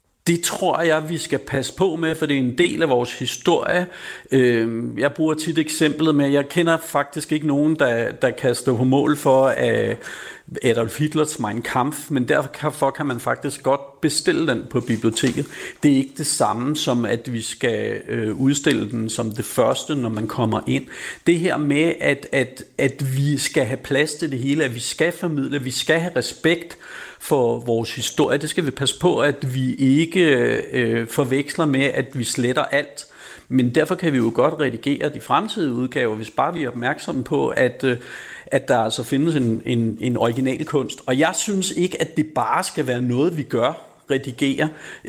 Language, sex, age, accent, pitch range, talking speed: Danish, male, 60-79, native, 125-155 Hz, 190 wpm